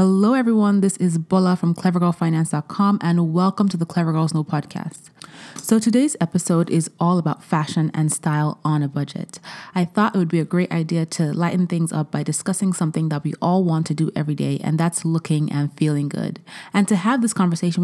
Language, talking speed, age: English, 205 wpm, 20-39